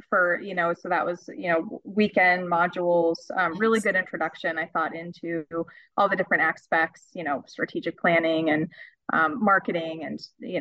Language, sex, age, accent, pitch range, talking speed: English, female, 30-49, American, 175-215 Hz, 170 wpm